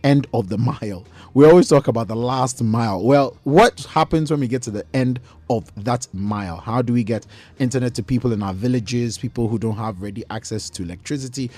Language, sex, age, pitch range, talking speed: English, male, 30-49, 100-130 Hz, 210 wpm